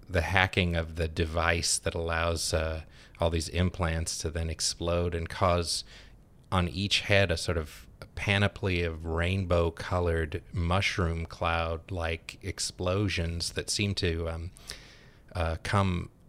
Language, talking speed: English, 125 wpm